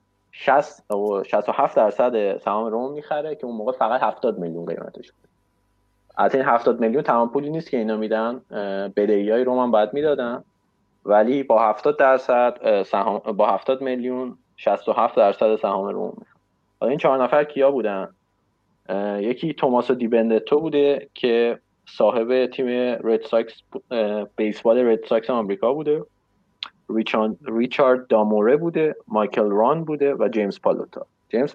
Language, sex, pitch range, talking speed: Persian, male, 110-145 Hz, 140 wpm